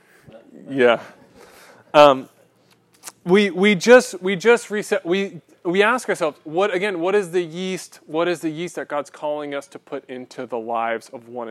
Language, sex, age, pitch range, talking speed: English, male, 20-39, 125-165 Hz, 170 wpm